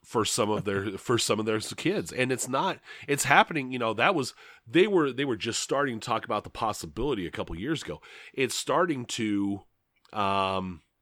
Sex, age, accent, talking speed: male, 30-49, American, 205 wpm